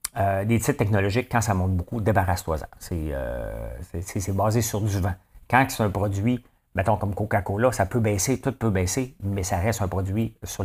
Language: English